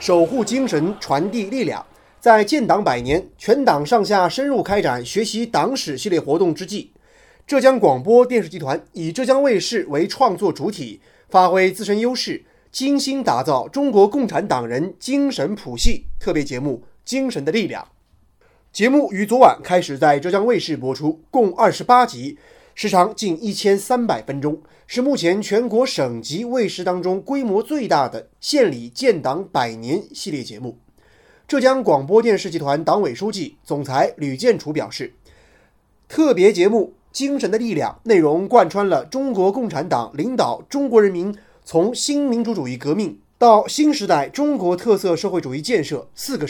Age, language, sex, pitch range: 30-49, Chinese, male, 165-255 Hz